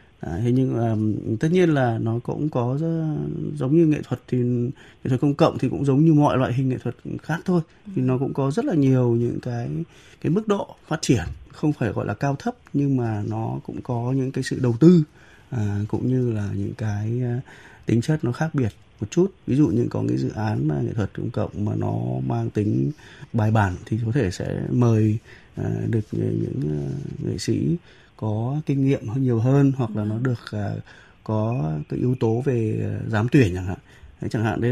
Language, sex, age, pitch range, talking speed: Vietnamese, male, 20-39, 110-140 Hz, 205 wpm